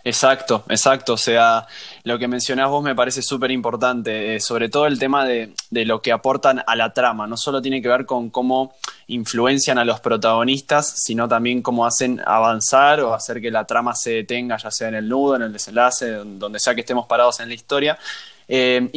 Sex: male